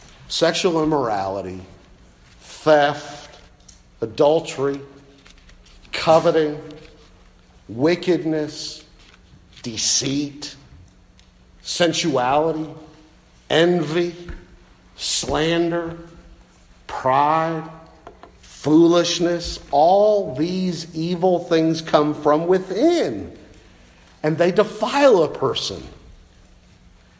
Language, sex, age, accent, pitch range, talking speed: English, male, 50-69, American, 155-225 Hz, 55 wpm